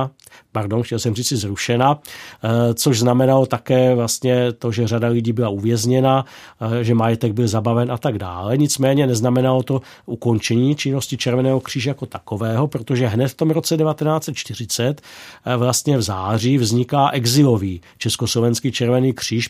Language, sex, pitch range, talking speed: Czech, male, 115-135 Hz, 140 wpm